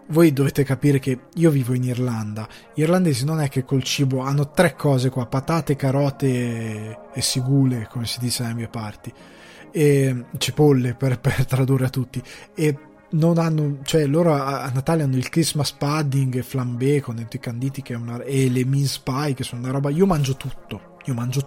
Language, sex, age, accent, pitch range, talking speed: Italian, male, 20-39, native, 130-160 Hz, 185 wpm